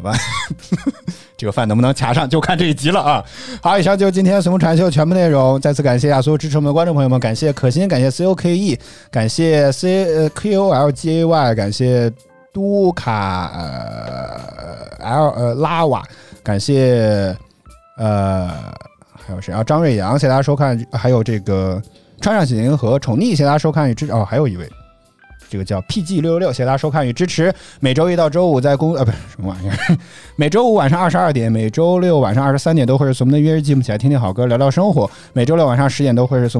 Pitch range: 120-160 Hz